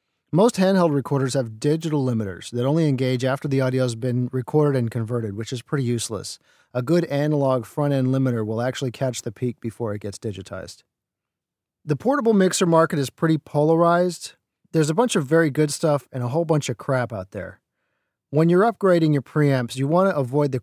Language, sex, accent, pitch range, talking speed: English, male, American, 120-150 Hz, 195 wpm